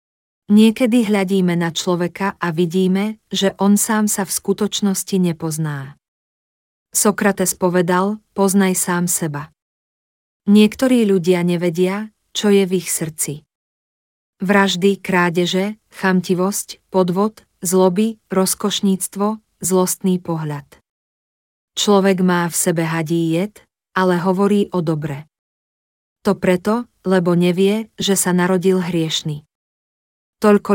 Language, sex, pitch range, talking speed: Slovak, female, 170-200 Hz, 105 wpm